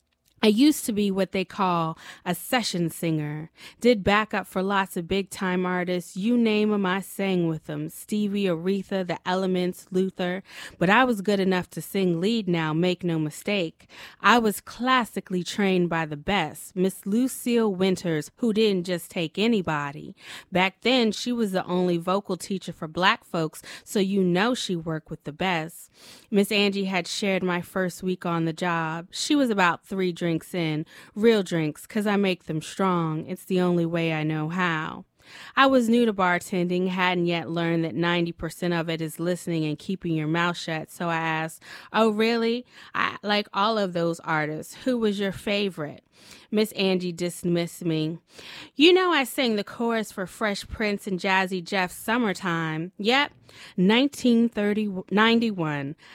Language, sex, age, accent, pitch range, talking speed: English, female, 20-39, American, 170-210 Hz, 170 wpm